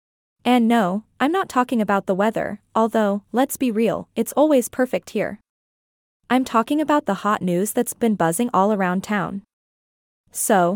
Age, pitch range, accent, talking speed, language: 20-39, 200-255 Hz, American, 160 wpm, English